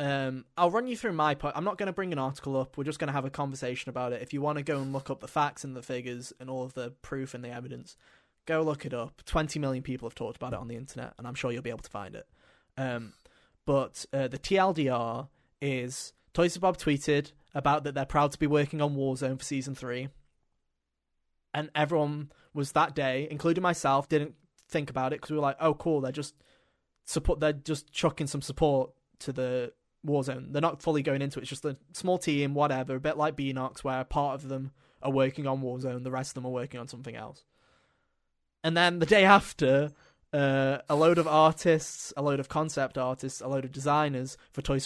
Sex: male